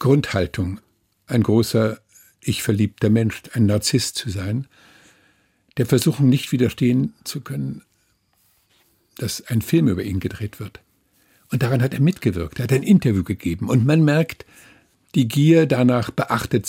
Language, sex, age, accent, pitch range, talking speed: German, male, 50-69, German, 105-130 Hz, 145 wpm